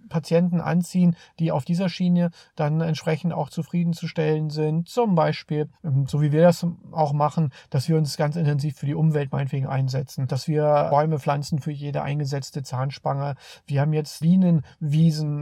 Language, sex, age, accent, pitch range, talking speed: German, male, 40-59, German, 150-170 Hz, 160 wpm